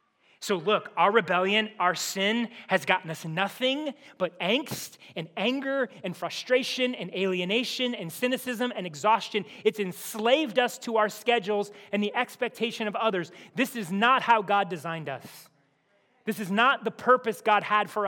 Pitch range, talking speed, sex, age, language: 180-225 Hz, 160 wpm, male, 30-49, English